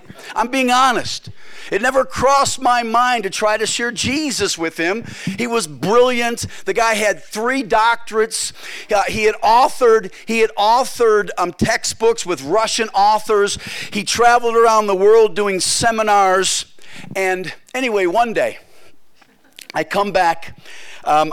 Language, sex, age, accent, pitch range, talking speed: English, male, 50-69, American, 185-230 Hz, 130 wpm